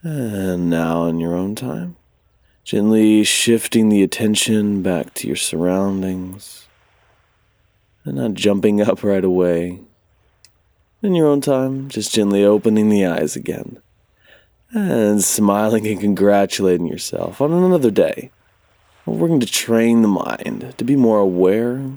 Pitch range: 95-115 Hz